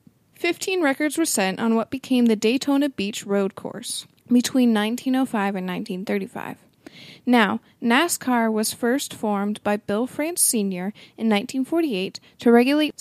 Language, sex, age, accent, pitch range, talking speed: English, female, 20-39, American, 205-265 Hz, 135 wpm